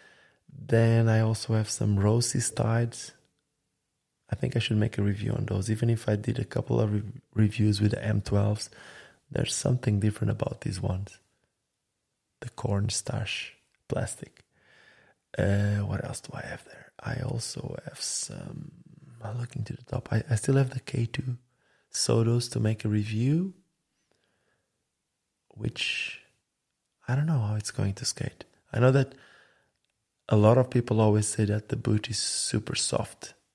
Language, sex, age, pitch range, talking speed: English, male, 20-39, 105-130 Hz, 155 wpm